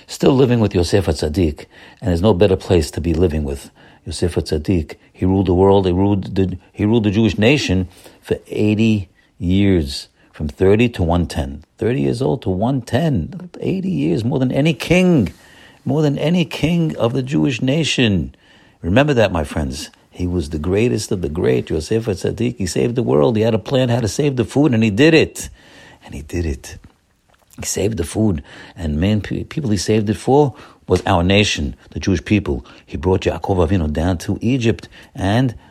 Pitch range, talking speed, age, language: 90-120 Hz, 190 wpm, 60-79, English